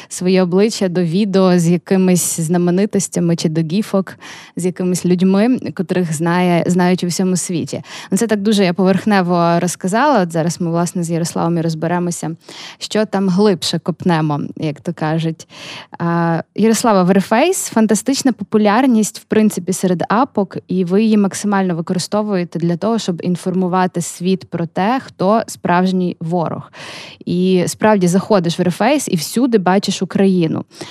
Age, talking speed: 20-39, 140 wpm